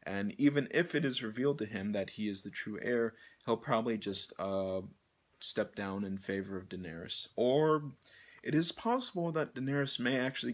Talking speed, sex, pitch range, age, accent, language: 180 wpm, male, 100-125 Hz, 30-49, American, English